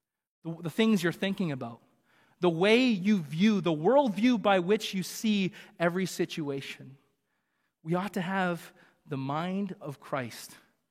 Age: 30-49